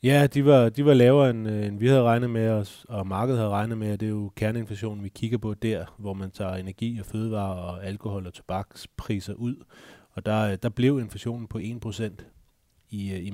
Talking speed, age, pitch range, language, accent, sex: 210 wpm, 30-49, 95-115 Hz, Danish, native, male